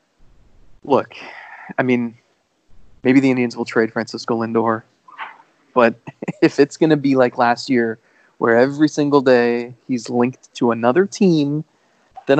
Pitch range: 120-160 Hz